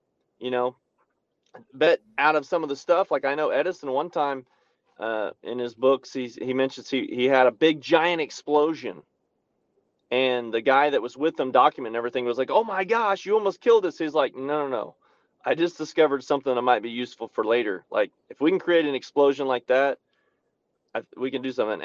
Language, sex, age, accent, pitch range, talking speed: English, male, 30-49, American, 125-155 Hz, 210 wpm